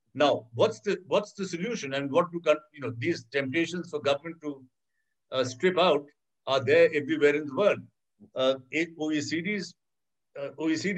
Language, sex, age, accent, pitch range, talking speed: English, male, 60-79, Indian, 140-180 Hz, 150 wpm